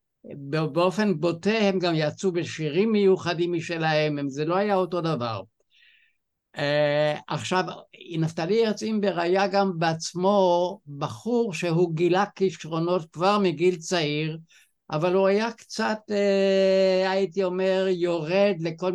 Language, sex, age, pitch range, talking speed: Hebrew, male, 60-79, 155-195 Hz, 110 wpm